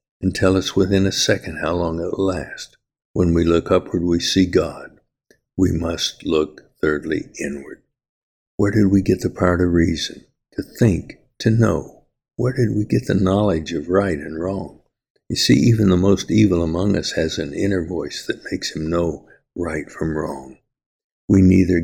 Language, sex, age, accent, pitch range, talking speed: English, male, 60-79, American, 80-95 Hz, 180 wpm